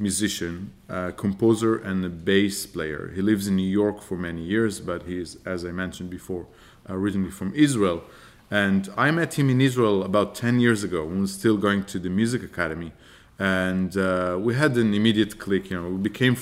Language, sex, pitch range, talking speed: French, male, 95-115 Hz, 210 wpm